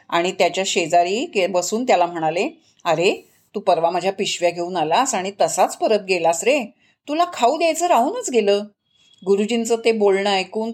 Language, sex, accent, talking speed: Marathi, female, native, 150 wpm